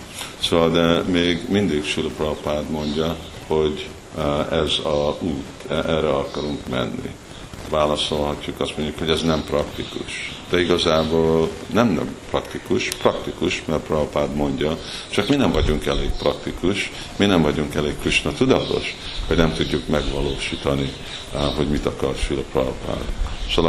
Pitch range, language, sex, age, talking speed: 70-80 Hz, Hungarian, male, 50-69, 135 wpm